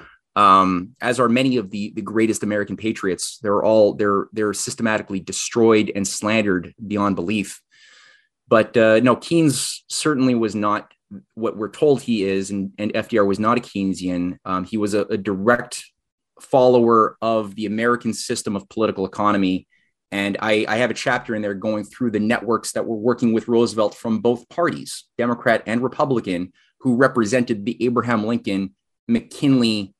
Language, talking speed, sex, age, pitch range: English, 165 wpm, male, 30-49, 105-125 Hz